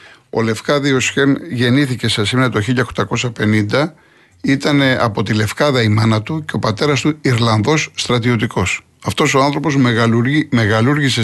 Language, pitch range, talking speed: Greek, 110-135 Hz, 130 wpm